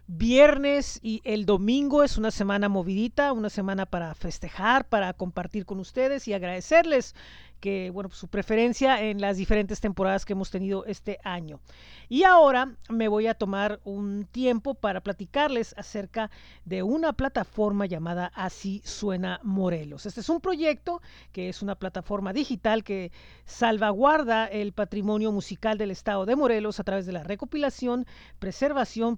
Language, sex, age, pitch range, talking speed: Spanish, female, 40-59, 195-245 Hz, 150 wpm